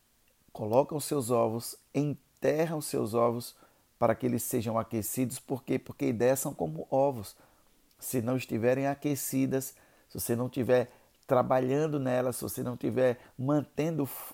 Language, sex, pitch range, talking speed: Portuguese, male, 115-135 Hz, 140 wpm